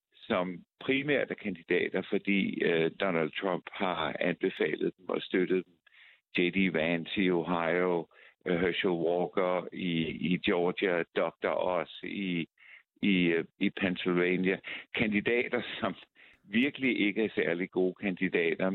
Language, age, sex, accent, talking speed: Danish, 60-79, male, native, 115 wpm